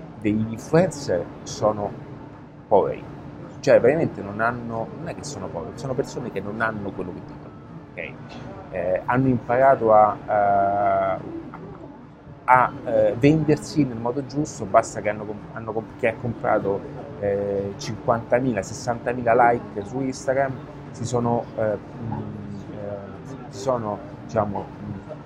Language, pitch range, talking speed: Italian, 105-135 Hz, 125 wpm